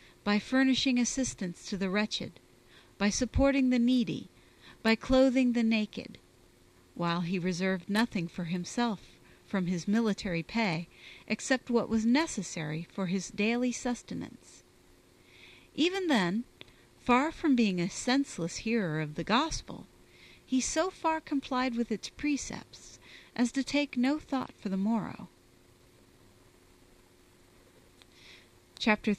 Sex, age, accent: female, 40-59, American